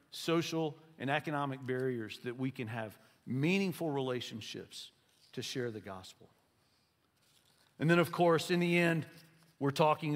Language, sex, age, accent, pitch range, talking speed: English, male, 50-69, American, 135-190 Hz, 135 wpm